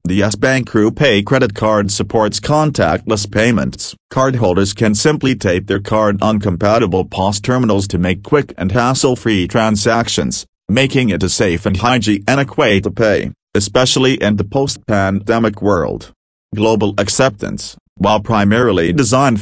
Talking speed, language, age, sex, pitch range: 135 wpm, English, 40-59, male, 100-120 Hz